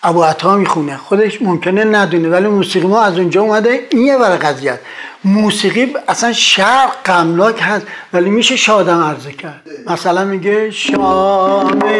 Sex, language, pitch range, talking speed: male, Persian, 155-205 Hz, 135 wpm